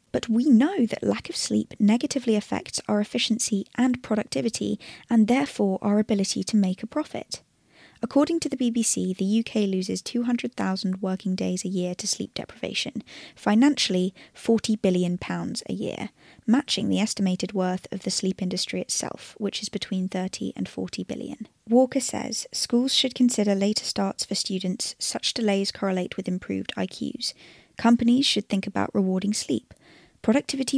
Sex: female